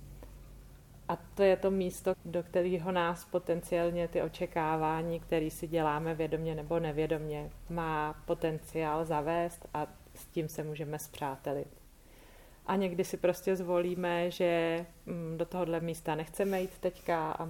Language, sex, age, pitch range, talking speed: Czech, female, 30-49, 155-175 Hz, 135 wpm